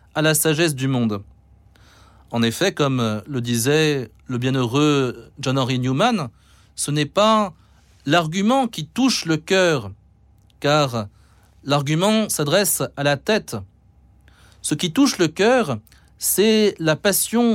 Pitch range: 125-195 Hz